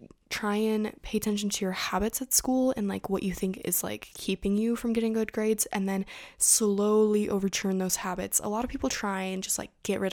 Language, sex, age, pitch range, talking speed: English, female, 10-29, 195-225 Hz, 225 wpm